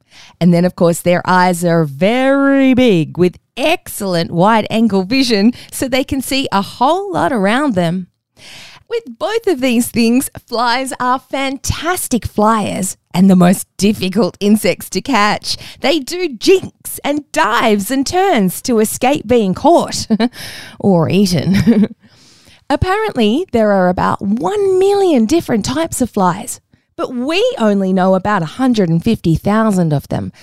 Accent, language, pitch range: Australian, English, 190-275 Hz